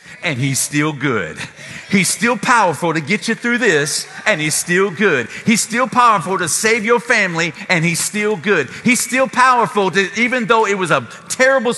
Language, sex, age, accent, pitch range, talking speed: English, male, 40-59, American, 170-225 Hz, 190 wpm